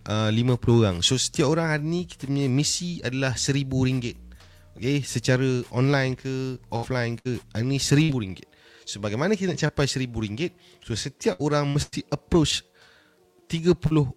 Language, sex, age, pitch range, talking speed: Indonesian, male, 30-49, 115-160 Hz, 145 wpm